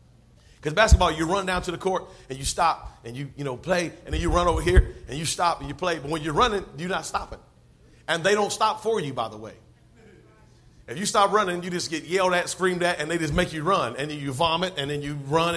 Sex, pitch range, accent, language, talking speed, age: male, 160-235 Hz, American, English, 265 wpm, 40-59